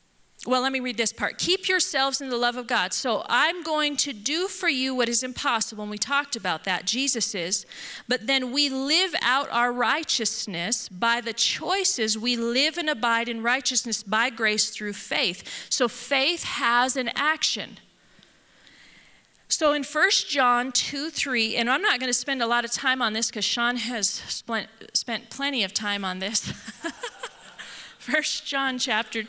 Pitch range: 225-285 Hz